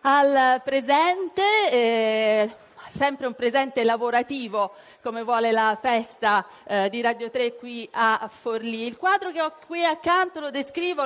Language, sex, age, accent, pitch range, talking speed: Italian, female, 40-59, native, 230-310 Hz, 140 wpm